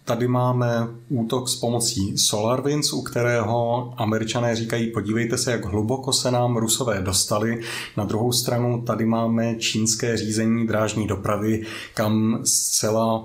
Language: Czech